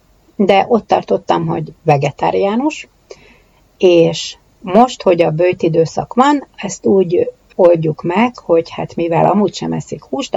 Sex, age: female, 60-79